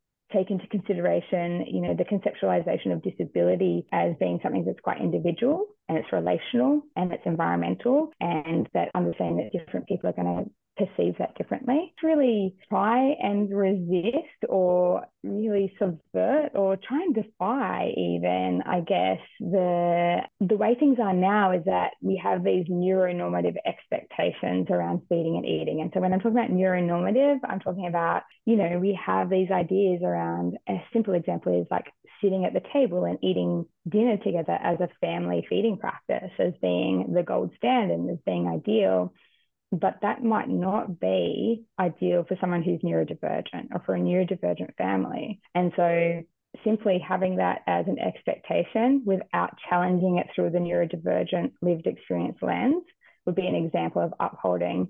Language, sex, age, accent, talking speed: English, female, 20-39, Australian, 160 wpm